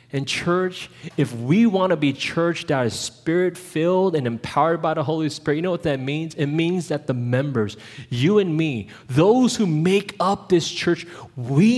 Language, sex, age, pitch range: English, male, 20-39, 125-180 Hz